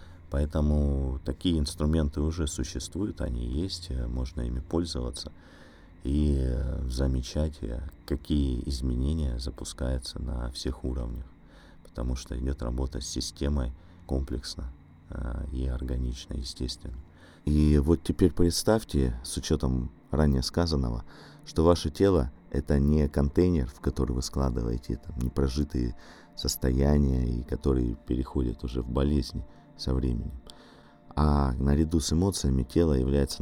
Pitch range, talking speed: 65-80 Hz, 110 wpm